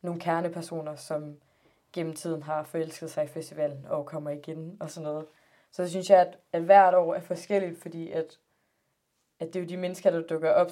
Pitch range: 160-180 Hz